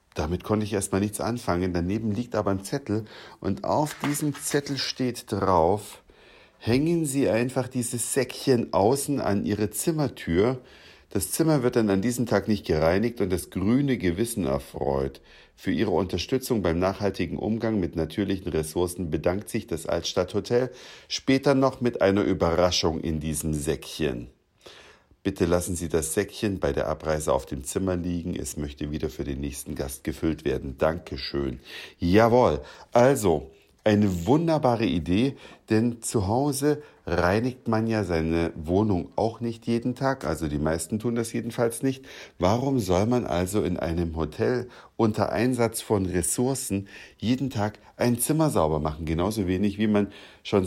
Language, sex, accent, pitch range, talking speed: German, male, German, 90-120 Hz, 155 wpm